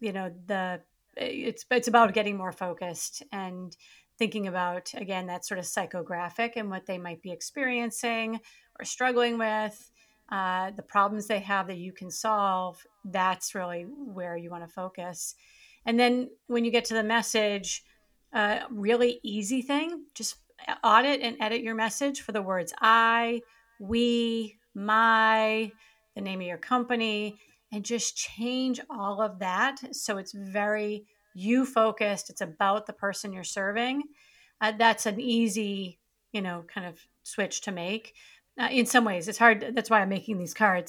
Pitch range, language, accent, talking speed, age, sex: 195-240 Hz, English, American, 165 wpm, 30-49, female